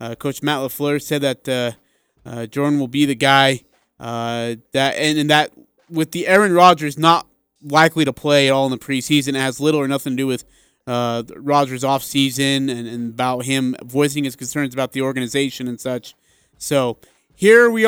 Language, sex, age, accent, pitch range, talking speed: English, male, 30-49, American, 130-160 Hz, 190 wpm